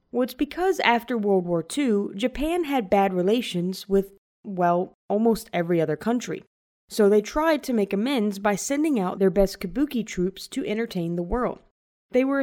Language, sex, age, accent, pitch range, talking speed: English, female, 20-39, American, 180-235 Hz, 175 wpm